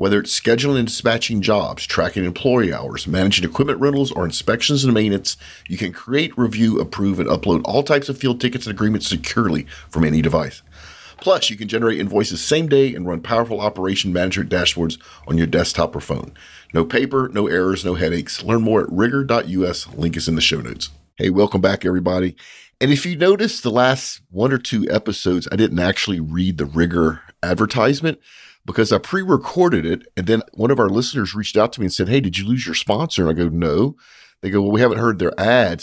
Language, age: English, 50-69